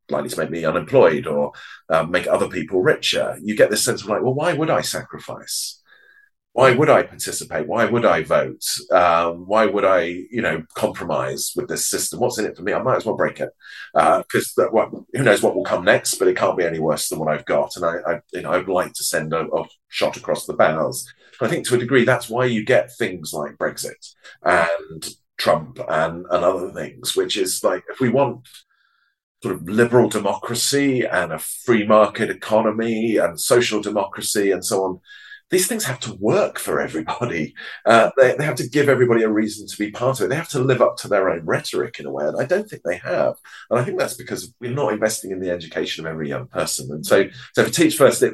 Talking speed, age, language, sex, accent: 225 wpm, 40-59, English, male, British